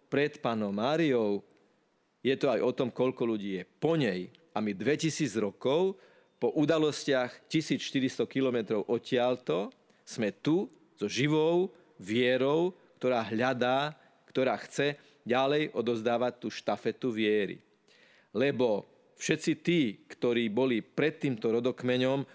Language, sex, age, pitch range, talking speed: Slovak, male, 40-59, 120-145 Hz, 120 wpm